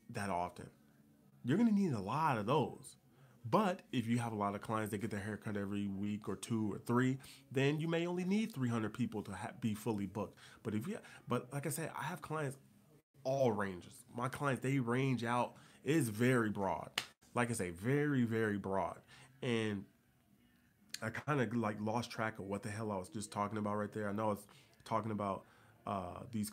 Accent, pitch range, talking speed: American, 100-120 Hz, 205 wpm